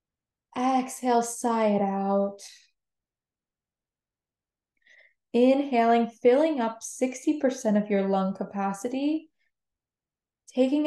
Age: 10-29